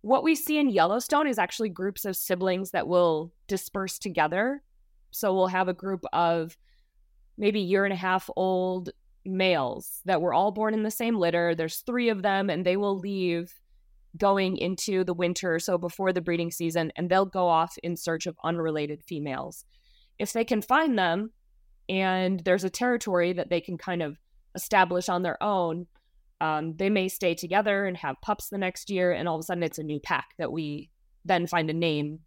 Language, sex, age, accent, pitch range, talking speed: English, female, 20-39, American, 165-200 Hz, 190 wpm